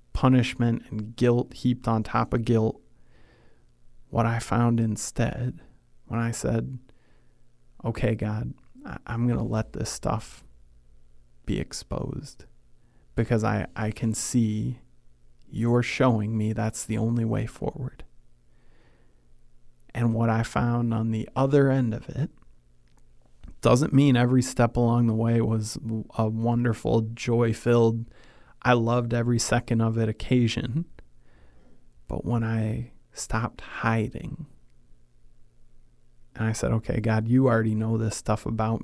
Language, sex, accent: English, male, American